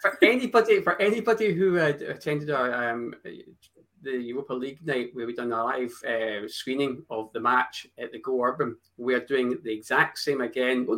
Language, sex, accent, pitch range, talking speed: English, male, British, 125-180 Hz, 185 wpm